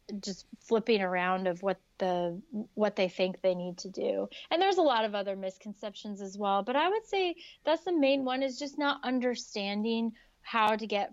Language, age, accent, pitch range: English, 20-39, American, 180-215 Hz